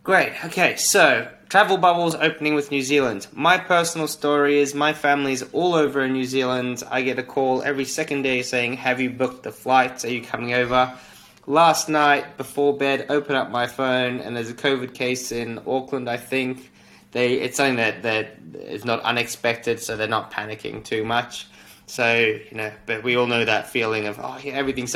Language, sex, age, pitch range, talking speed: English, male, 20-39, 110-140 Hz, 195 wpm